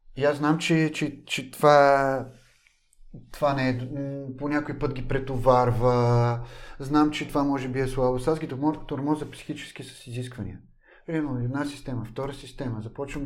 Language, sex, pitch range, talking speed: Bulgarian, male, 125-160 Hz, 155 wpm